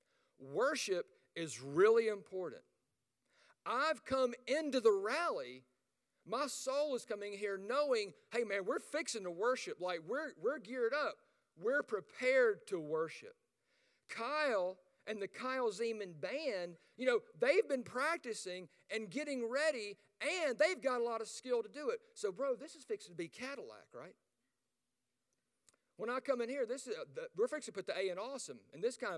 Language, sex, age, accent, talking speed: English, male, 50-69, American, 170 wpm